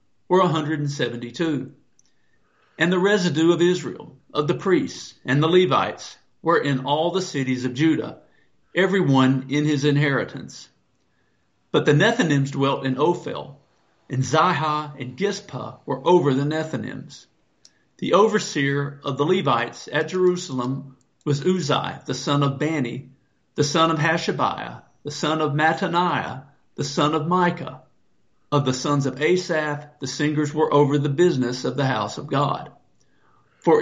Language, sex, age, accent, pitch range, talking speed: English, male, 50-69, American, 135-170 Hz, 145 wpm